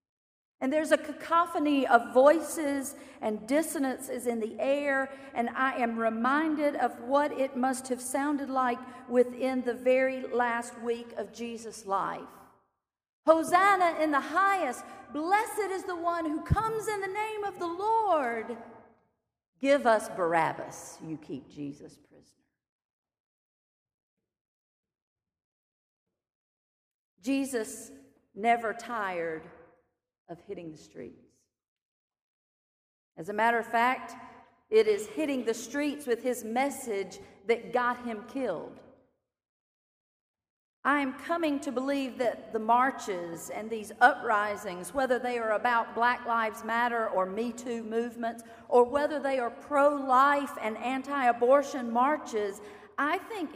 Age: 50-69